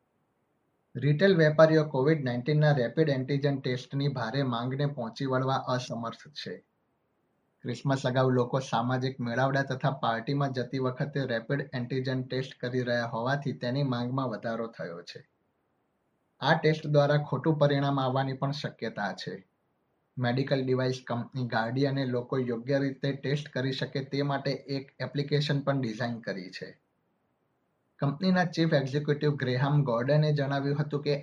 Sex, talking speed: male, 115 wpm